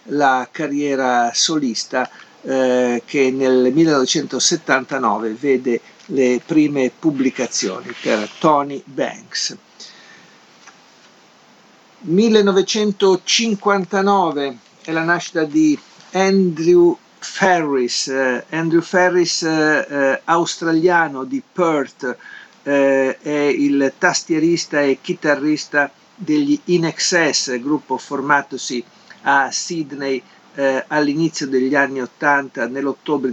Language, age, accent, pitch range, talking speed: Italian, 50-69, native, 130-175 Hz, 85 wpm